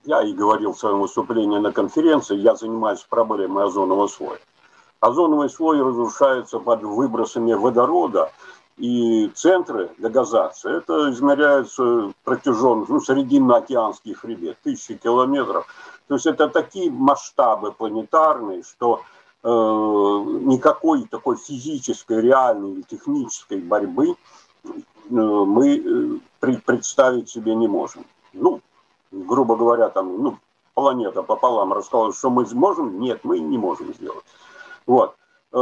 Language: Russian